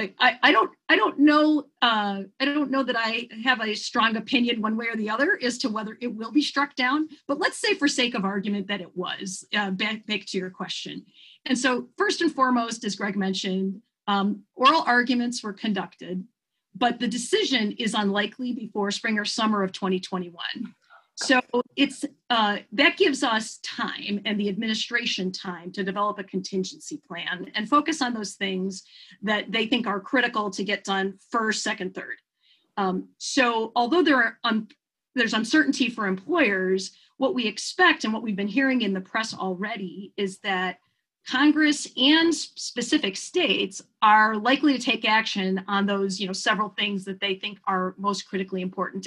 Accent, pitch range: American, 200-260 Hz